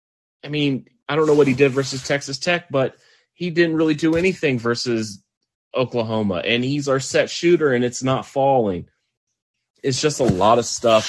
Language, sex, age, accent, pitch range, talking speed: English, male, 30-49, American, 105-130 Hz, 185 wpm